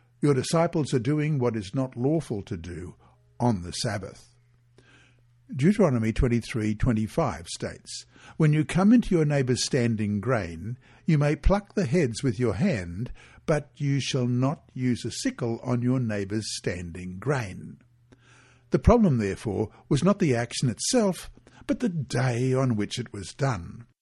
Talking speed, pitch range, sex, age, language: 150 wpm, 115-150 Hz, male, 60-79, English